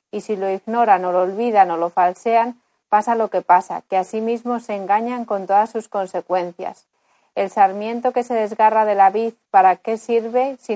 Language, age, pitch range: Spanish, 30-49, 190-225 Hz